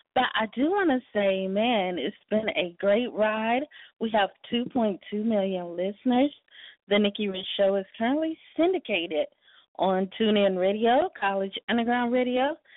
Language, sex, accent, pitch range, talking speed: English, female, American, 205-305 Hz, 140 wpm